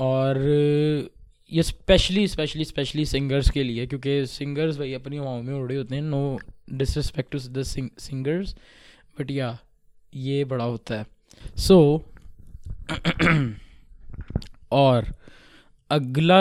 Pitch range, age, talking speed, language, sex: 130-155 Hz, 20-39, 115 wpm, Urdu, male